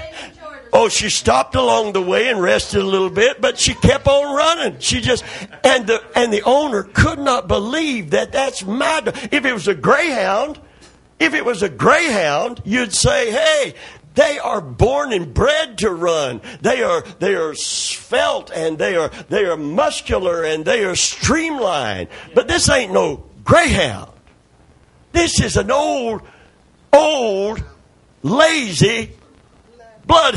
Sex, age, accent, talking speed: male, 50-69, American, 150 wpm